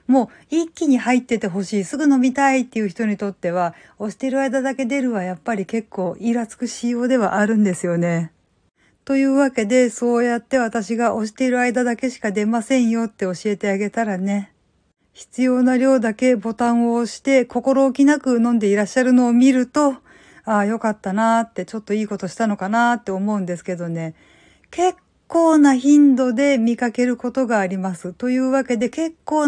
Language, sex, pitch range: Japanese, female, 200-255 Hz